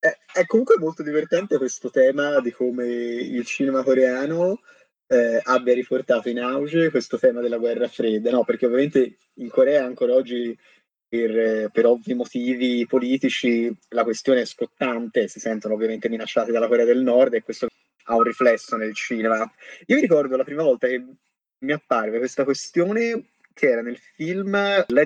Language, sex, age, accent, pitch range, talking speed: Italian, male, 20-39, native, 120-150 Hz, 165 wpm